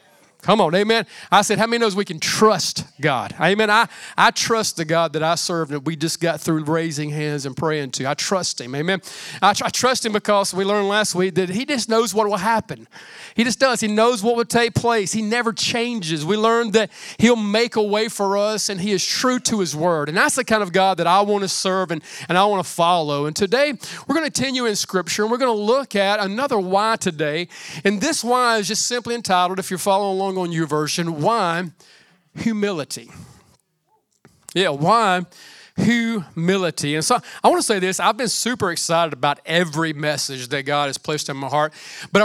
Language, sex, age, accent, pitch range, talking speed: English, male, 40-59, American, 175-225 Hz, 220 wpm